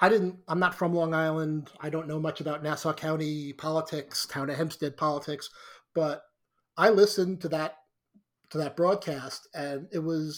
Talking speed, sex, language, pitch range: 175 wpm, male, English, 150-180 Hz